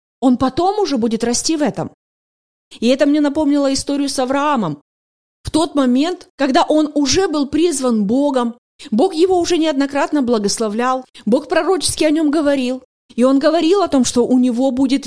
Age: 30-49